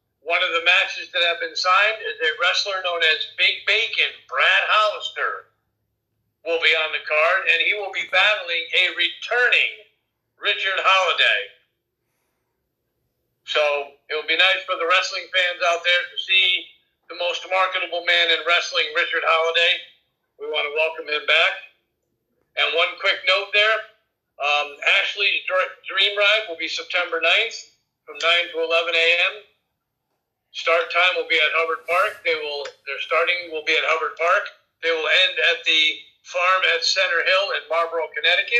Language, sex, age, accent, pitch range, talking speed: English, male, 50-69, American, 160-200 Hz, 160 wpm